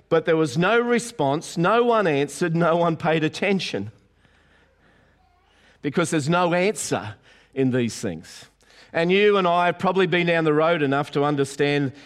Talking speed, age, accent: 160 wpm, 50-69, Australian